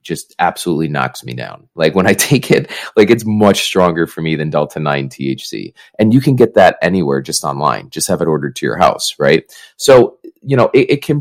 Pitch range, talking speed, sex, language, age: 85-110 Hz, 225 wpm, male, English, 30-49